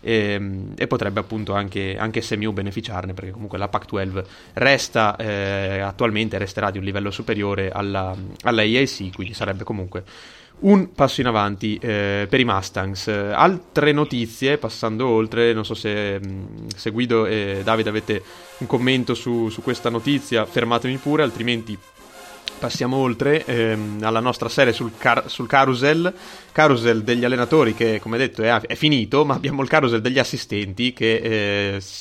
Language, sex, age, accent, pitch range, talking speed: Italian, male, 20-39, native, 105-130 Hz, 155 wpm